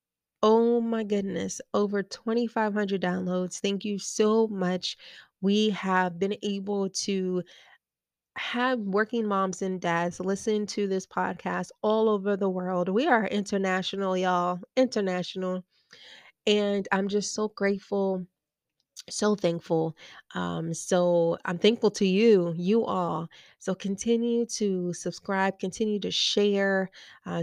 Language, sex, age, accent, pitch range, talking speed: English, female, 20-39, American, 180-225 Hz, 120 wpm